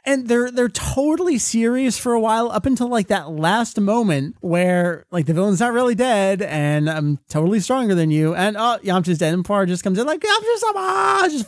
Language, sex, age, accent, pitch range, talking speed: English, male, 30-49, American, 140-210 Hz, 205 wpm